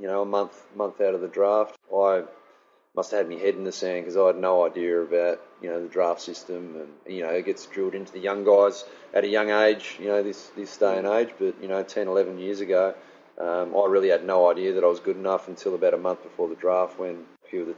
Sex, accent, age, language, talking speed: male, Australian, 30-49, English, 270 wpm